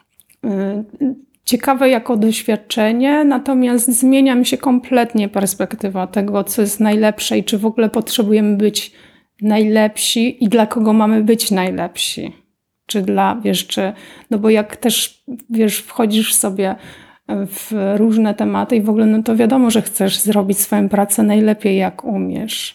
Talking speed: 140 wpm